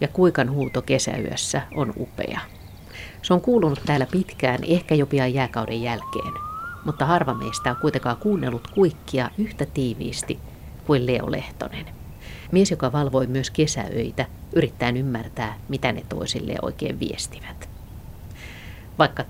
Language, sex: Finnish, female